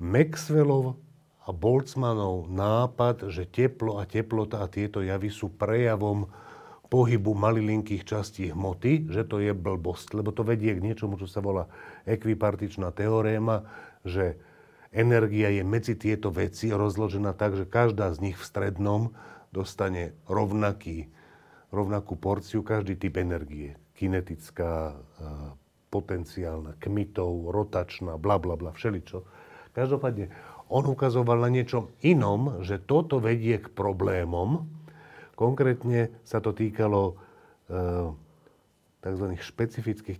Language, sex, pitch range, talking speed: Slovak, male, 90-115 Hz, 115 wpm